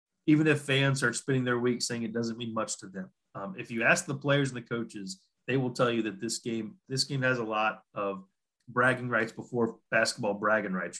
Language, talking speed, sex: English, 230 wpm, male